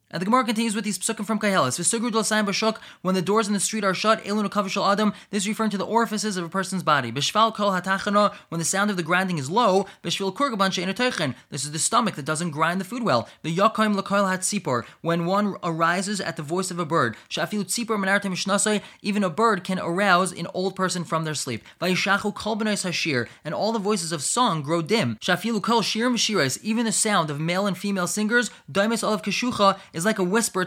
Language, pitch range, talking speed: English, 170-215 Hz, 170 wpm